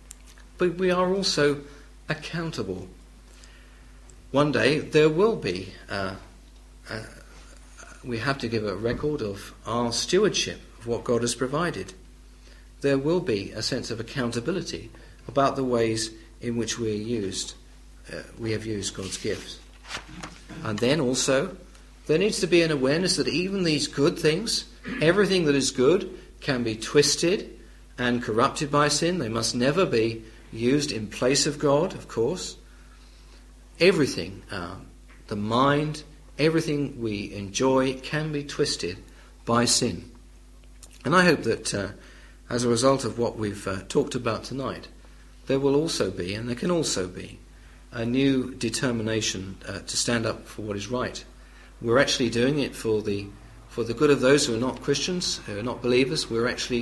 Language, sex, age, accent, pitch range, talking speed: English, male, 50-69, British, 110-145 Hz, 160 wpm